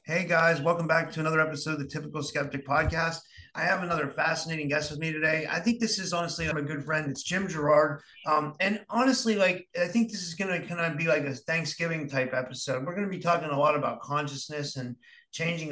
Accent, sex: American, male